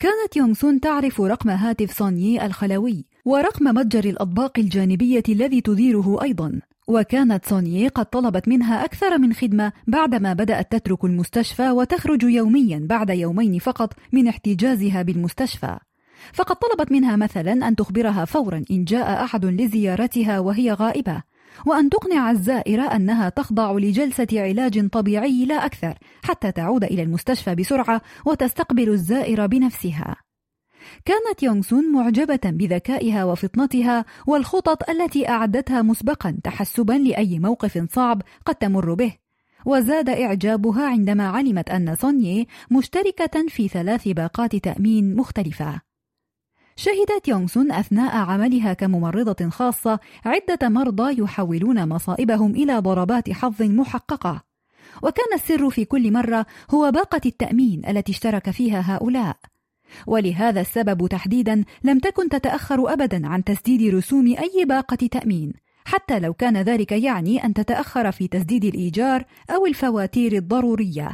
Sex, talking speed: female, 120 wpm